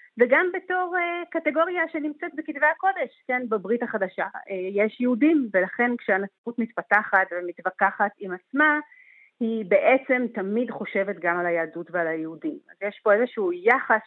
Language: Hebrew